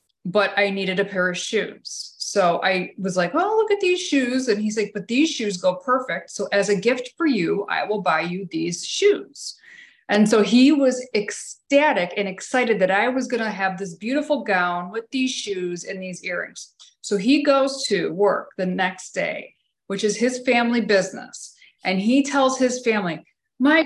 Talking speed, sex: 195 wpm, female